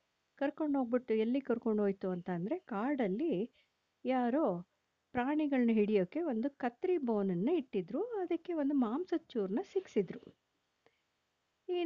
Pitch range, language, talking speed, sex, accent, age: 200-265 Hz, Kannada, 100 wpm, female, native, 50-69